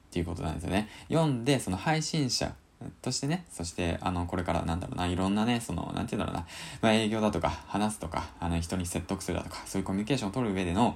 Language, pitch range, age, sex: Japanese, 85-120 Hz, 20-39, male